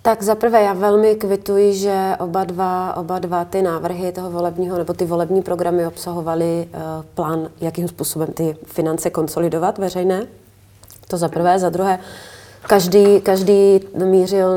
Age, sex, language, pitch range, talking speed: 30-49, female, Czech, 170-185 Hz, 150 wpm